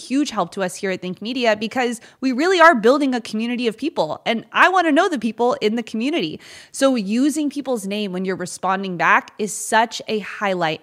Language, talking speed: English, 215 wpm